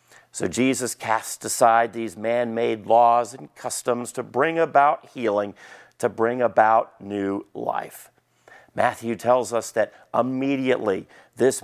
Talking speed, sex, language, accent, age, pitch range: 125 wpm, male, English, American, 50-69, 115-140 Hz